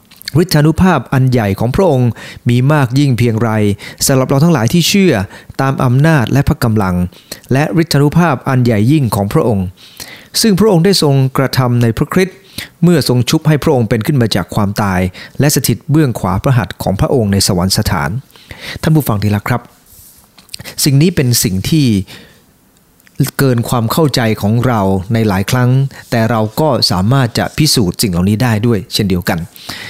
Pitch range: 110-150 Hz